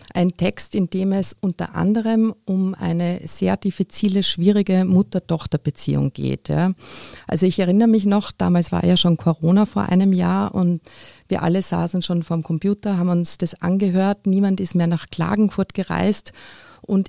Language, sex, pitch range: German, female, 175-205 Hz